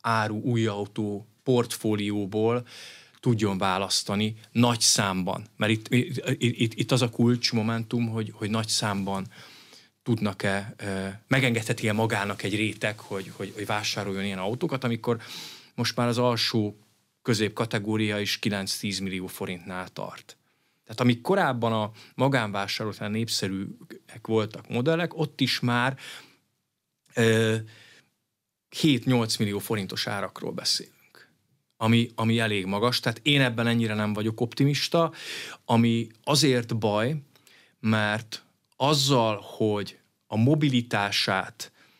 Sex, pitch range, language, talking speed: male, 105-120 Hz, Hungarian, 115 wpm